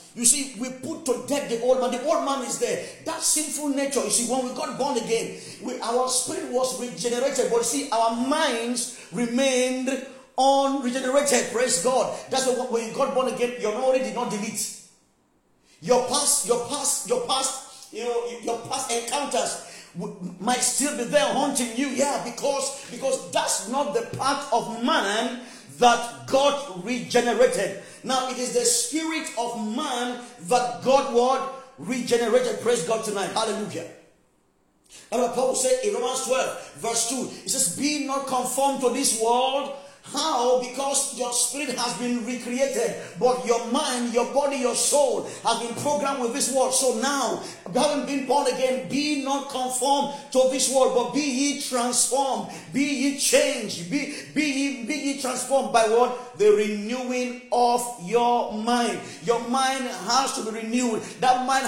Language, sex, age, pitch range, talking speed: English, male, 40-59, 240-275 Hz, 165 wpm